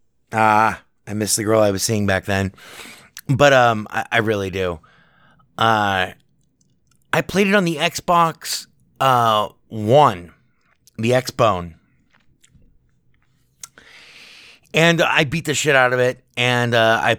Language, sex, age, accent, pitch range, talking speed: English, male, 30-49, American, 110-160 Hz, 135 wpm